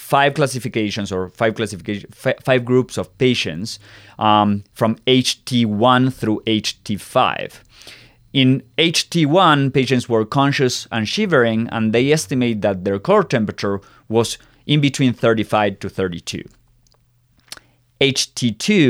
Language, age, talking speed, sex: English, 30-49, 110 wpm, male